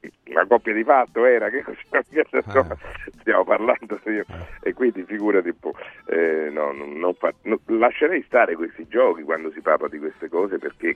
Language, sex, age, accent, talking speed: Italian, male, 40-59, native, 170 wpm